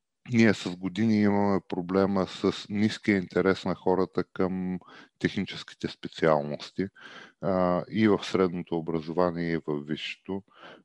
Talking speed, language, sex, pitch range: 115 wpm, Bulgarian, male, 85-95 Hz